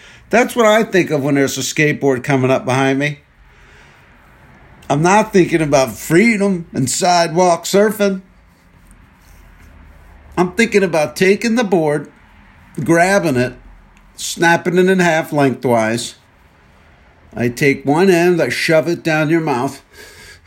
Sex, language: male, English